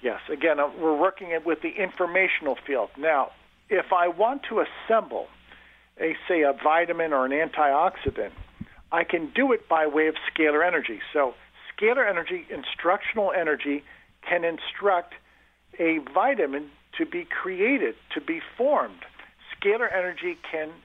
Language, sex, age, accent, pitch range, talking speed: English, male, 50-69, American, 155-235 Hz, 135 wpm